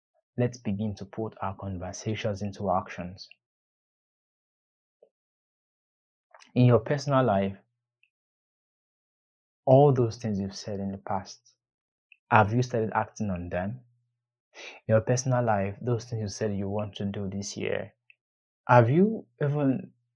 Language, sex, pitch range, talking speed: English, male, 100-120 Hz, 130 wpm